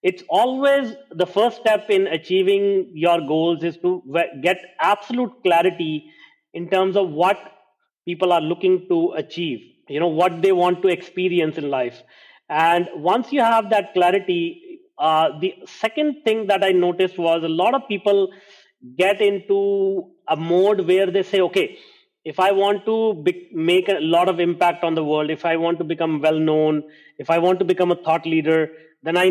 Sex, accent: male, Indian